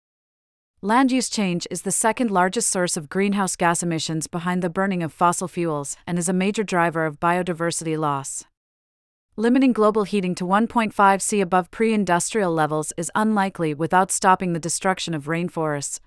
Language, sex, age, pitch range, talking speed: English, female, 40-59, 170-200 Hz, 155 wpm